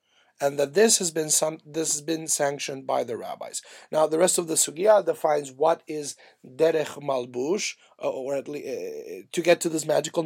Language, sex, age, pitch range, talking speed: English, male, 30-49, 155-215 Hz, 200 wpm